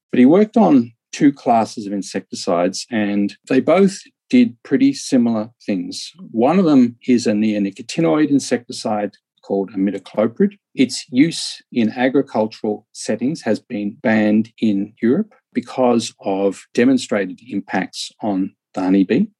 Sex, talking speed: male, 125 wpm